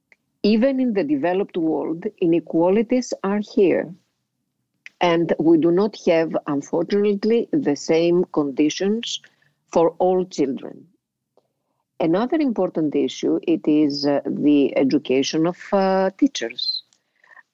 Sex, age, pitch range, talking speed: female, 50-69, 155-230 Hz, 105 wpm